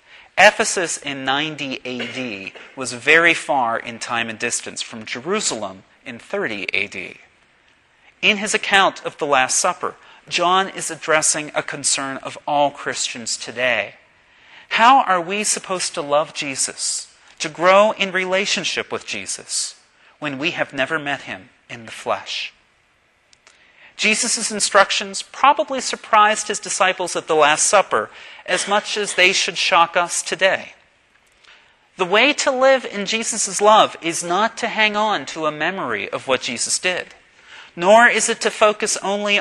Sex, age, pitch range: male, 40-59, 155-210 Hz